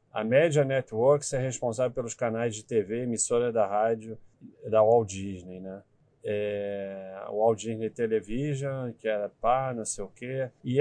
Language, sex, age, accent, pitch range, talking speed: Portuguese, male, 40-59, Brazilian, 105-130 Hz, 150 wpm